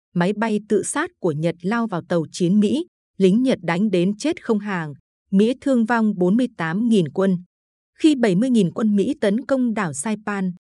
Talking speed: 175 wpm